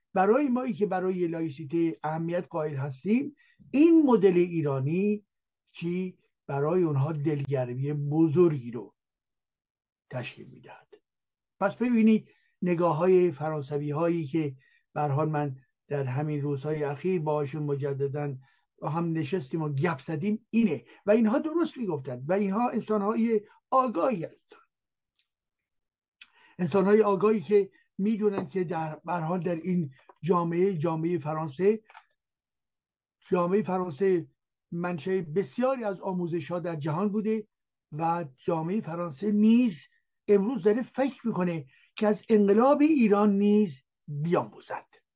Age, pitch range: 60-79, 155-210 Hz